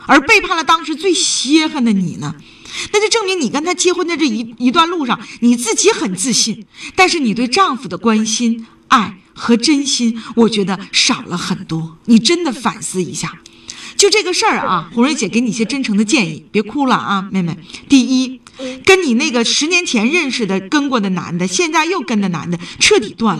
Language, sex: Chinese, female